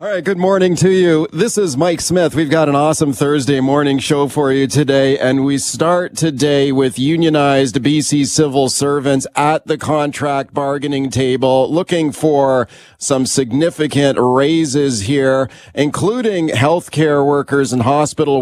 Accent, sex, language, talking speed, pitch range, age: American, male, English, 150 wpm, 135-155 Hz, 40-59